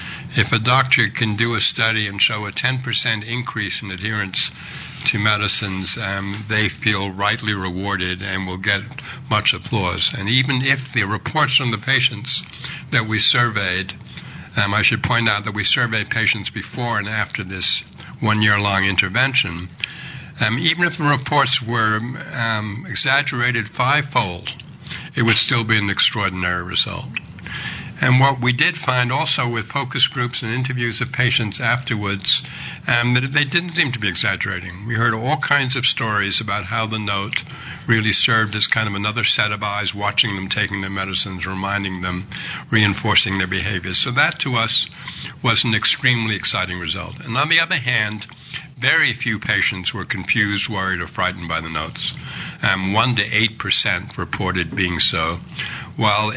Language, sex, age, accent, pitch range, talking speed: English, male, 60-79, American, 100-130 Hz, 165 wpm